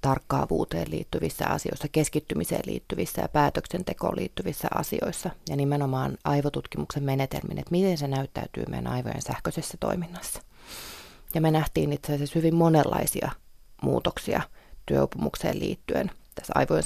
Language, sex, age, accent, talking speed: Finnish, female, 30-49, native, 115 wpm